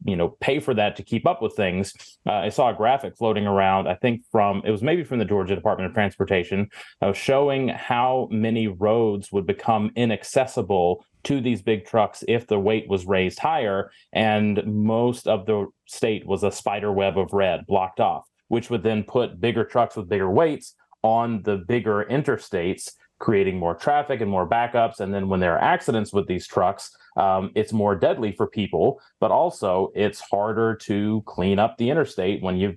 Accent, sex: American, male